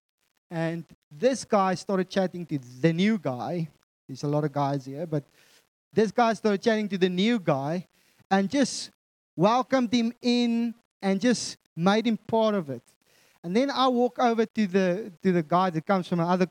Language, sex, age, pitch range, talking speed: English, male, 20-39, 175-240 Hz, 180 wpm